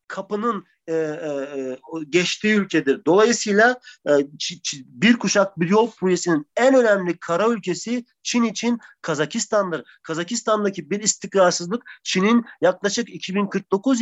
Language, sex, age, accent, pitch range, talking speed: Turkish, male, 40-59, native, 150-205 Hz, 115 wpm